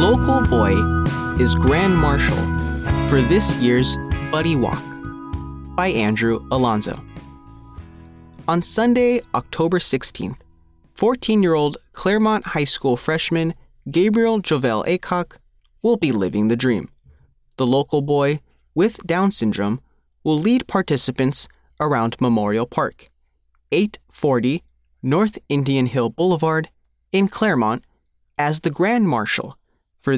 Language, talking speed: English, 115 wpm